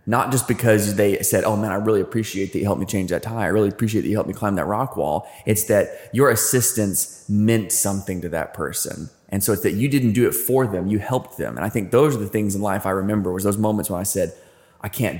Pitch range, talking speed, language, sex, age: 95-110 Hz, 275 wpm, English, male, 20-39